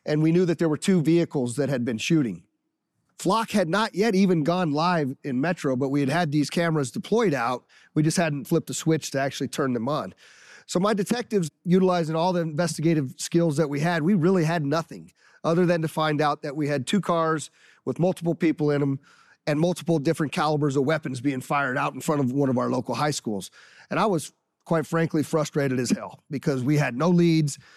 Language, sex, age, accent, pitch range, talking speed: English, male, 40-59, American, 145-170 Hz, 220 wpm